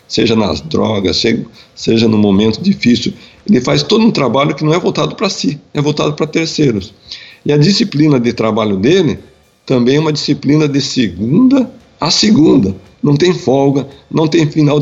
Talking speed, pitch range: 170 wpm, 120-155 Hz